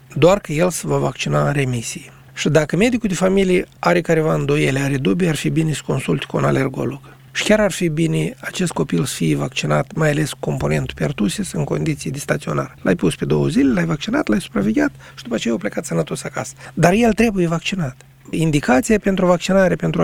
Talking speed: 205 wpm